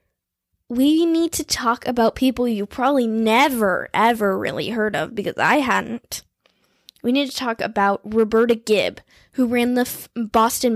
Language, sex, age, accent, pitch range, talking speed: English, female, 10-29, American, 220-280 Hz, 150 wpm